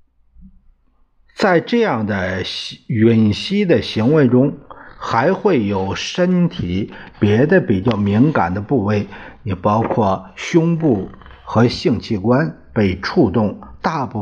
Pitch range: 90-145 Hz